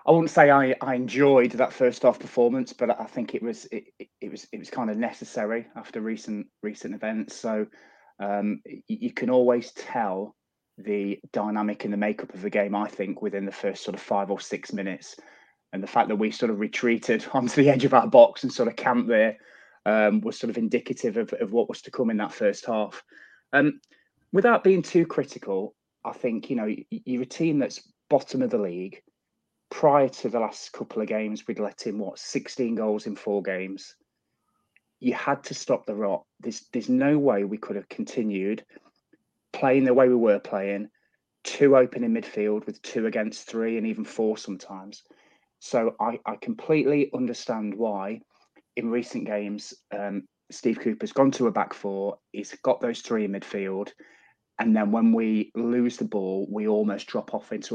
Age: 20-39